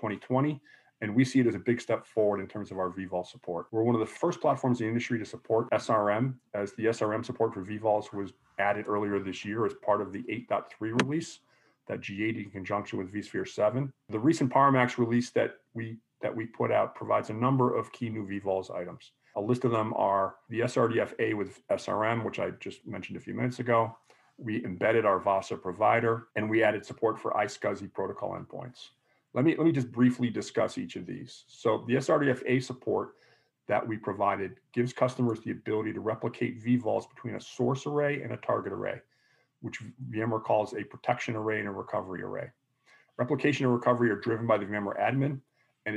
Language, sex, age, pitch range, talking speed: English, male, 40-59, 105-125 Hz, 200 wpm